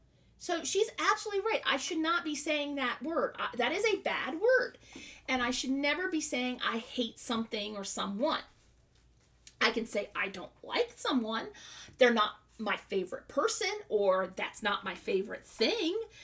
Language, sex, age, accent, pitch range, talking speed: English, female, 40-59, American, 235-320 Hz, 165 wpm